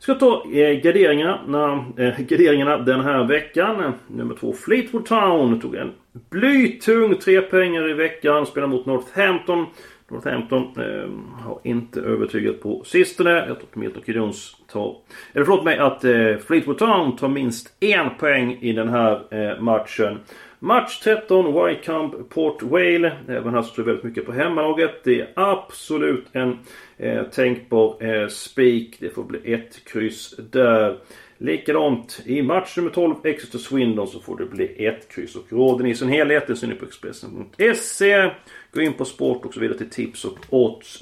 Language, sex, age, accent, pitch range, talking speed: Swedish, male, 40-59, native, 120-180 Hz, 160 wpm